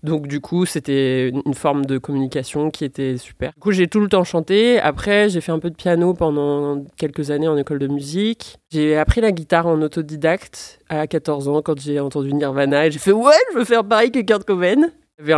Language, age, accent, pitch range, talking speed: French, 30-49, French, 145-165 Hz, 230 wpm